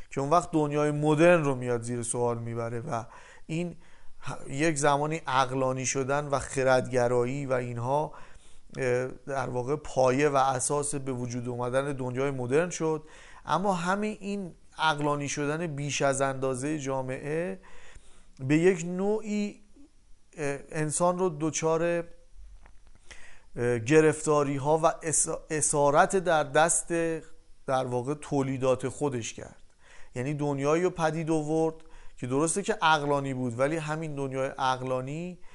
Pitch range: 125-155 Hz